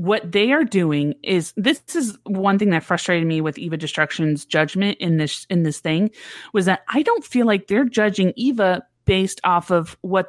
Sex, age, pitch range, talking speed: female, 30-49, 180-220 Hz, 200 wpm